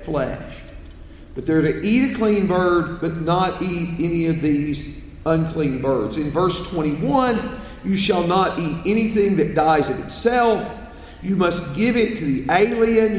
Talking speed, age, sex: 155 wpm, 50-69, male